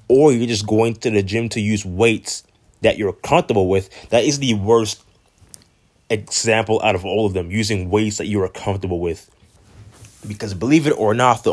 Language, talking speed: English, 195 wpm